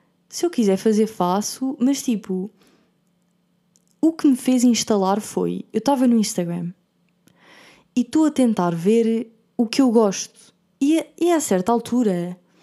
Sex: female